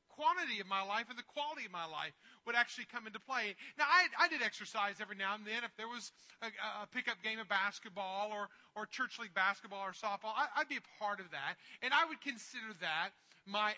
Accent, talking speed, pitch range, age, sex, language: American, 230 wpm, 190-240 Hz, 40-59, male, English